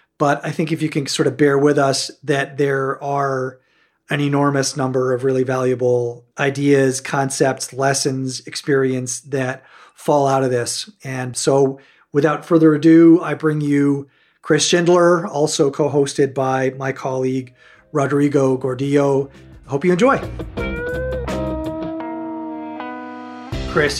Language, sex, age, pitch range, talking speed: English, male, 40-59, 130-155 Hz, 130 wpm